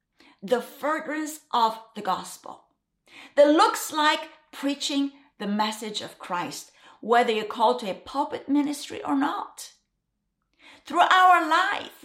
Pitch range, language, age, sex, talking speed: 235-320 Hz, English, 50-69, female, 125 wpm